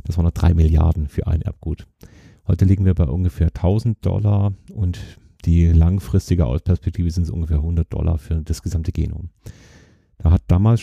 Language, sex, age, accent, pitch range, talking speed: German, male, 40-59, German, 85-105 Hz, 170 wpm